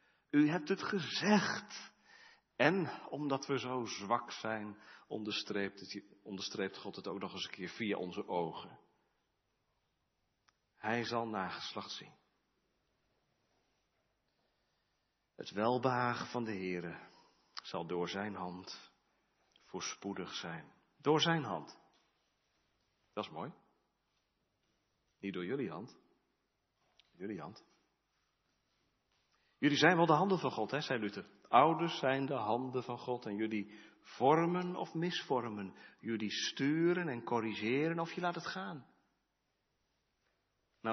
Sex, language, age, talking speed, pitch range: male, Dutch, 40-59, 115 wpm, 105-135 Hz